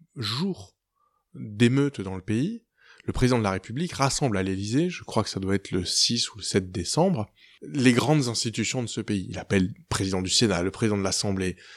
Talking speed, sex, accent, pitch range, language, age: 210 wpm, male, French, 100-130 Hz, French, 20-39